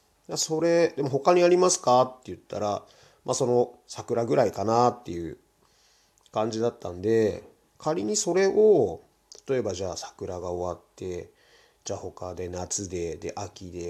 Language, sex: Japanese, male